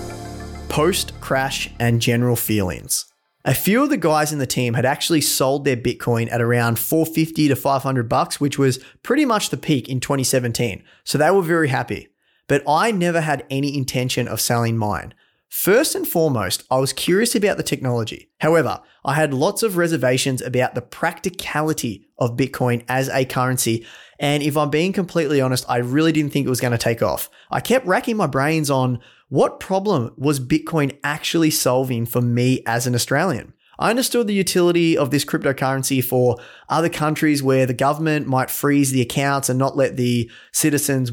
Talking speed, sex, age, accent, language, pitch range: 180 wpm, male, 30-49, Australian, English, 125-160 Hz